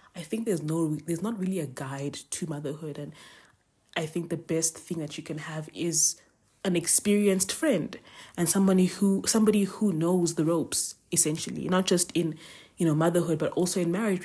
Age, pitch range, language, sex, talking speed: 20-39, 155-185 Hz, English, female, 185 wpm